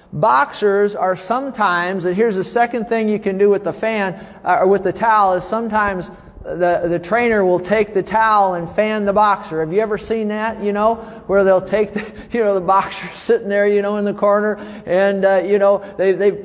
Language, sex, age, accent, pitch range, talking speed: English, male, 50-69, American, 195-215 Hz, 220 wpm